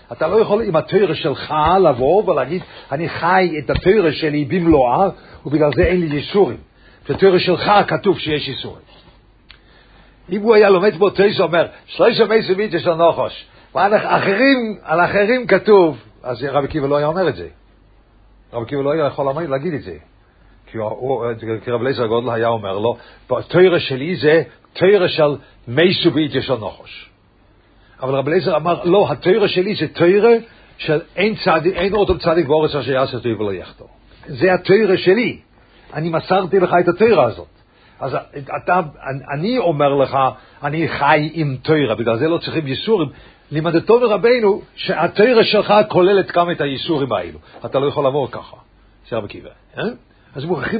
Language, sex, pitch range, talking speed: English, male, 130-185 Hz, 150 wpm